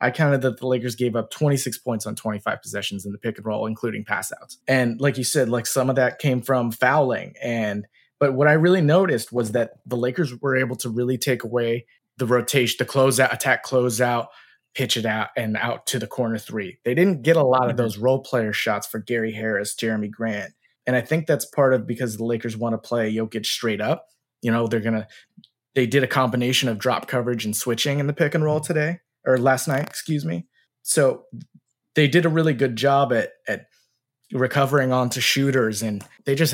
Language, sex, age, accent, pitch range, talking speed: English, male, 20-39, American, 115-150 Hz, 215 wpm